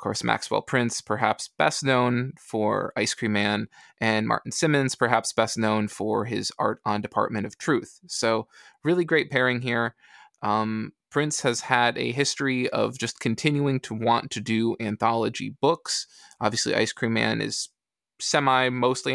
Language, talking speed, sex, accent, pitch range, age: English, 155 wpm, male, American, 115-145 Hz, 20-39